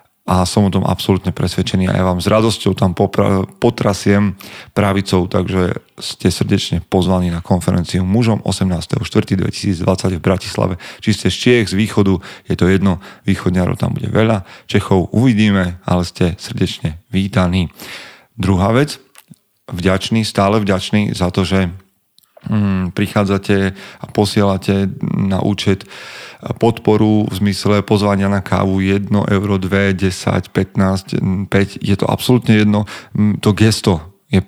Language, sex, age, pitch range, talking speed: Slovak, male, 30-49, 95-110 Hz, 135 wpm